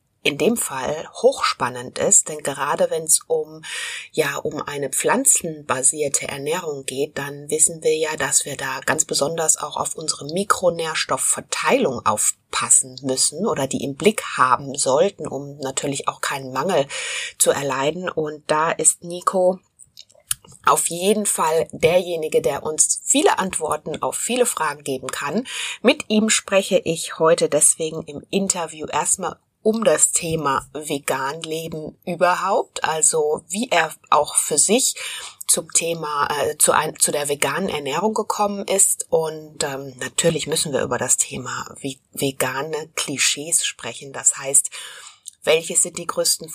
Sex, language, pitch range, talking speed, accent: female, German, 150-225 Hz, 140 wpm, German